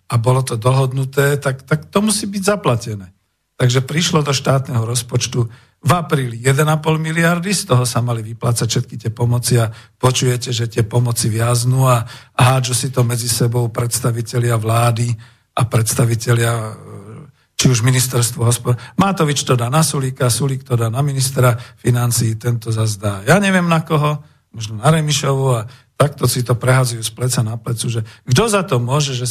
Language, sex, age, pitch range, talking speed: Slovak, male, 50-69, 115-135 Hz, 170 wpm